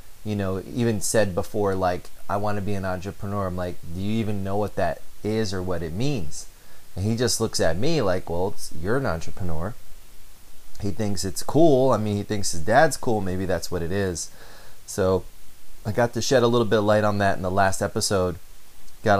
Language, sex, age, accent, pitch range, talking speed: English, male, 30-49, American, 90-110 Hz, 215 wpm